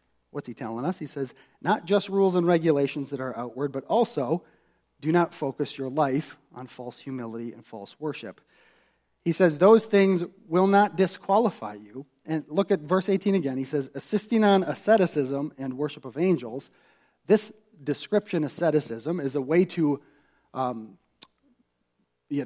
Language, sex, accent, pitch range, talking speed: English, male, American, 135-180 Hz, 160 wpm